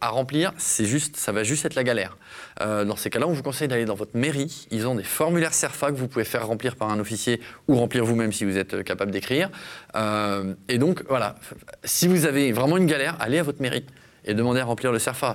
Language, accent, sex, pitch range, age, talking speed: French, French, male, 115-160 Hz, 20-39, 240 wpm